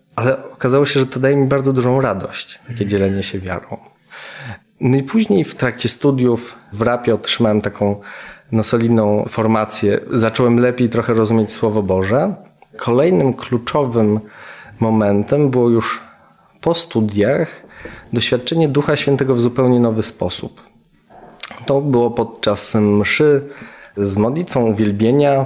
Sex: male